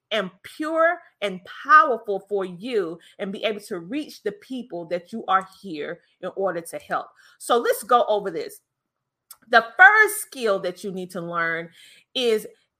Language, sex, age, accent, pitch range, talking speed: English, female, 30-49, American, 195-250 Hz, 165 wpm